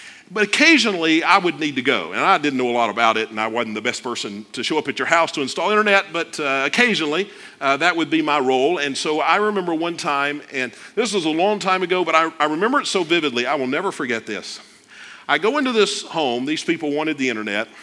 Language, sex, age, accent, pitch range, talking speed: English, male, 50-69, American, 140-205 Hz, 250 wpm